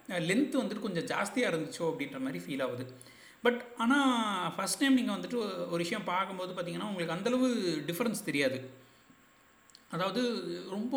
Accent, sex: native, male